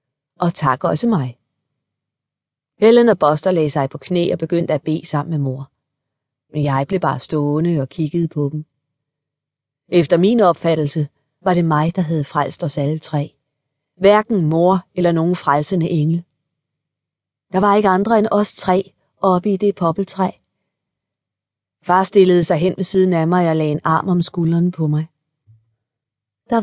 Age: 30-49